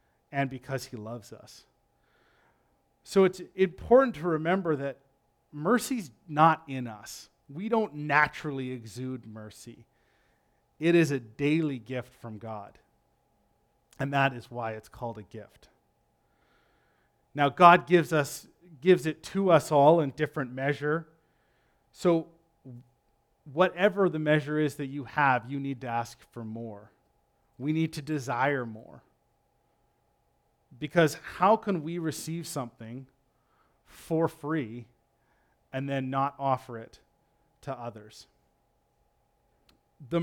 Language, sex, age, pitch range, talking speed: English, male, 30-49, 115-155 Hz, 120 wpm